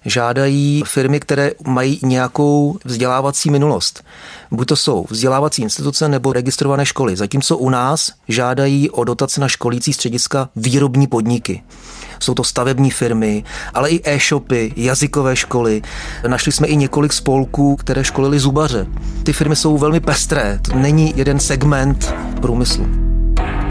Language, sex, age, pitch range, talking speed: Czech, male, 30-49, 120-145 Hz, 135 wpm